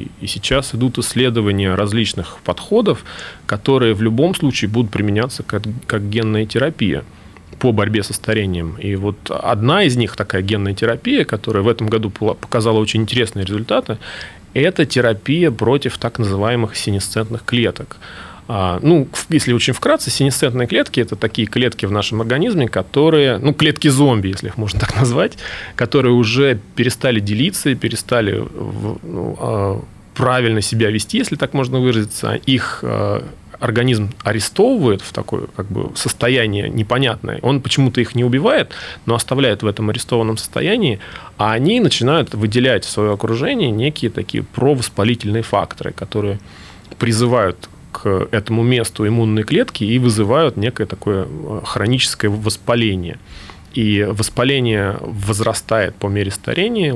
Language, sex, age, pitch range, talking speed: Russian, male, 30-49, 105-125 Hz, 130 wpm